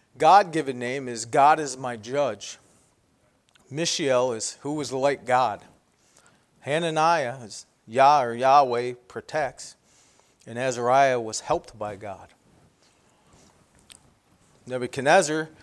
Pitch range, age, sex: 120-160 Hz, 40-59, male